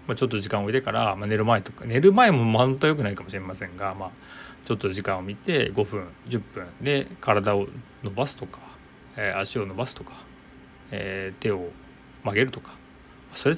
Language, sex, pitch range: Japanese, male, 100-140 Hz